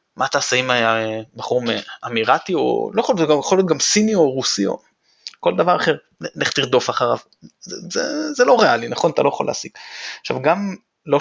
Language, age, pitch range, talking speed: Hebrew, 20-39, 120-190 Hz, 185 wpm